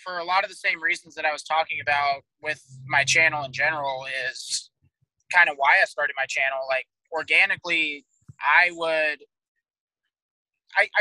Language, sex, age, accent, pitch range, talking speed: English, male, 20-39, American, 140-170 Hz, 165 wpm